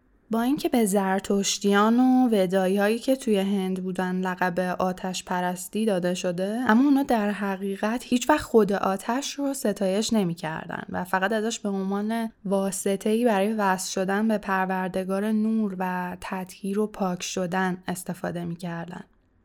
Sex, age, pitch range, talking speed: female, 10-29, 185-220 Hz, 145 wpm